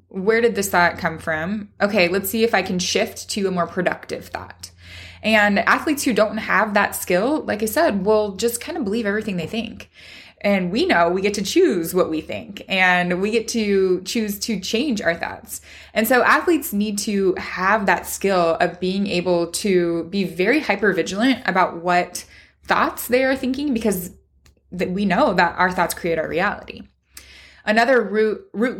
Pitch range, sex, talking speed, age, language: 175-220 Hz, female, 185 wpm, 20-39, English